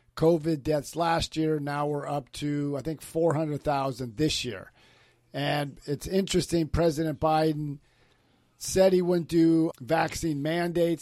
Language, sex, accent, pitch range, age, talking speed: English, male, American, 130-160 Hz, 50-69, 130 wpm